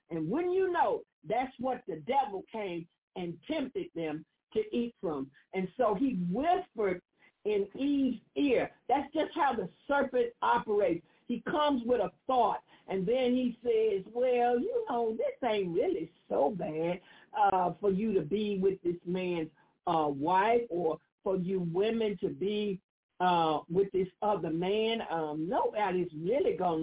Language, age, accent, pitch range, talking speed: English, 50-69, American, 180-255 Hz, 155 wpm